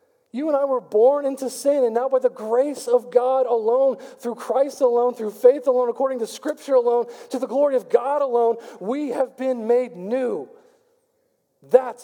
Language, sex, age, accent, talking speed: English, male, 40-59, American, 185 wpm